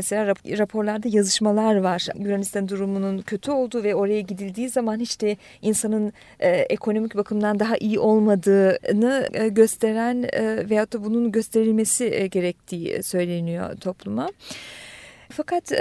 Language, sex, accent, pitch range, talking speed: Turkish, female, native, 200-245 Hz, 105 wpm